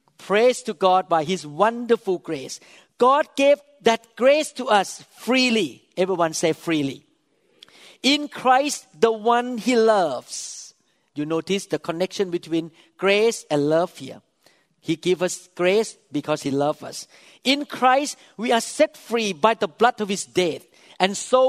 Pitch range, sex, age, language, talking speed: 170-230 Hz, male, 50-69, English, 150 wpm